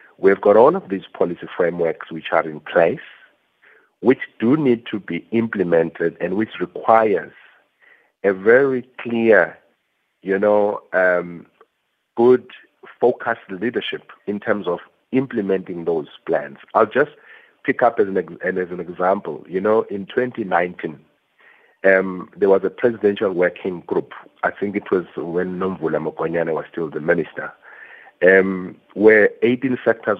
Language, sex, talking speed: English, male, 140 wpm